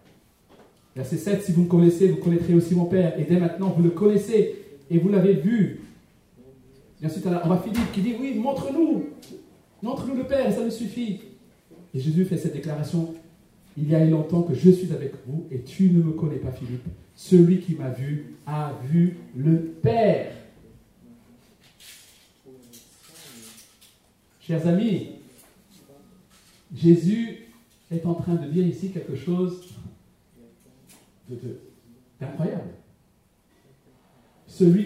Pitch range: 160-215 Hz